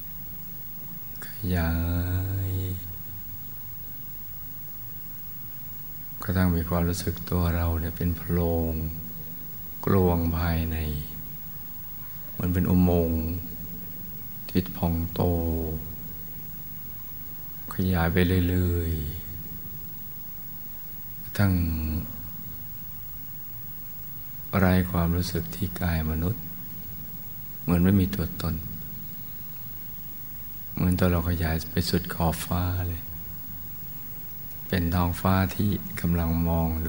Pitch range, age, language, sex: 85-100 Hz, 60-79, Thai, male